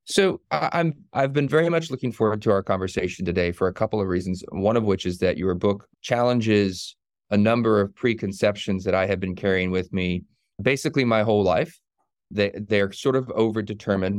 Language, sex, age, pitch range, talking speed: English, male, 30-49, 95-110 Hz, 195 wpm